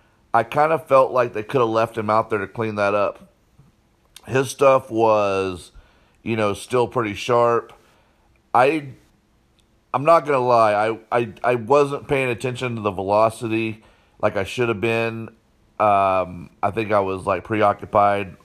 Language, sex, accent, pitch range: English, male, American, 105-125 Hz